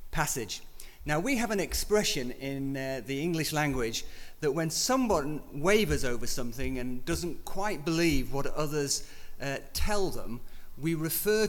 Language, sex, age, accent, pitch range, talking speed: English, male, 40-59, British, 120-145 Hz, 145 wpm